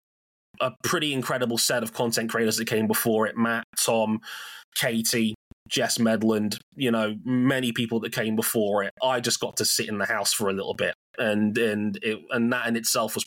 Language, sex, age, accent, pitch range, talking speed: English, male, 20-39, British, 110-130 Hz, 200 wpm